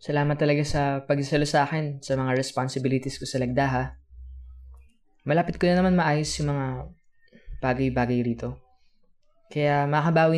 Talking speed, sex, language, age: 135 wpm, female, Filipino, 20-39